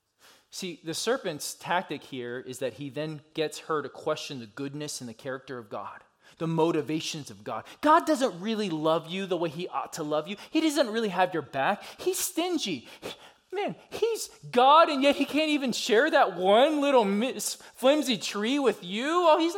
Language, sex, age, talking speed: English, male, 20-39, 190 wpm